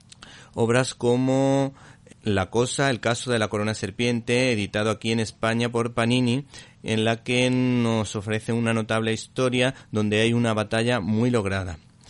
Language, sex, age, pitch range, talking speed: Spanish, male, 30-49, 110-120 Hz, 150 wpm